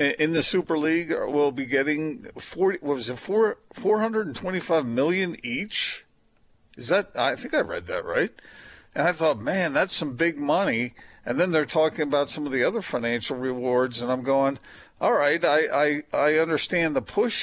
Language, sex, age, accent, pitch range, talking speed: English, male, 50-69, American, 130-175 Hz, 195 wpm